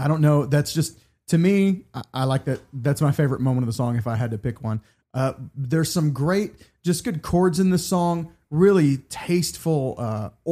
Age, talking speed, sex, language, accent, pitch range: 30-49, 210 wpm, male, English, American, 115-145 Hz